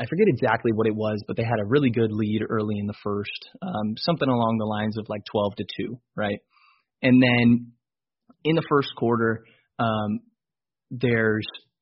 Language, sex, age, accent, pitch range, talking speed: English, male, 20-39, American, 110-130 Hz, 185 wpm